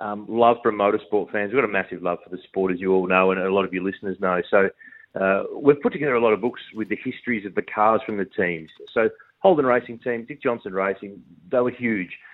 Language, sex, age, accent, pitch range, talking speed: English, male, 30-49, Australian, 105-130 Hz, 255 wpm